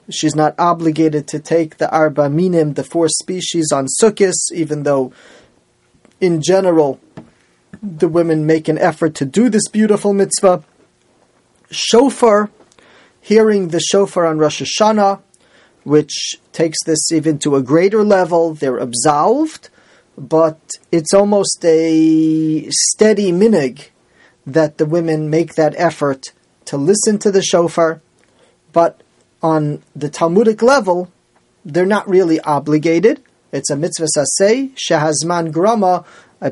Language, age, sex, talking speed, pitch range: English, 30-49, male, 125 wpm, 155-195 Hz